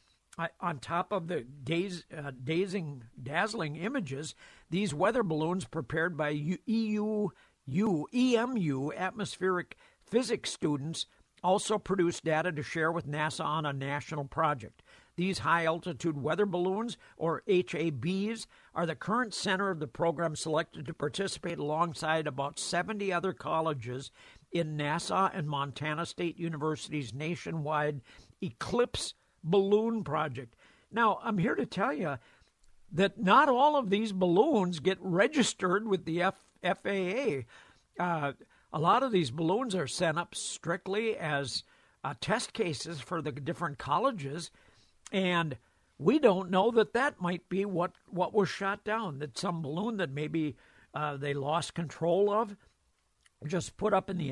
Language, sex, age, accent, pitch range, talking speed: English, male, 60-79, American, 155-195 Hz, 135 wpm